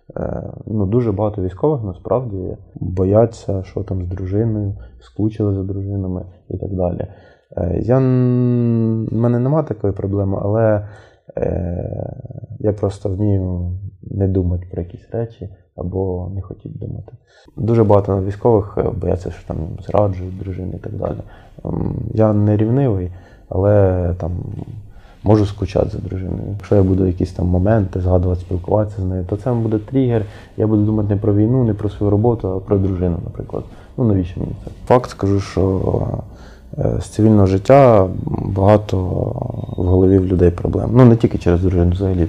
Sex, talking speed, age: male, 145 wpm, 20-39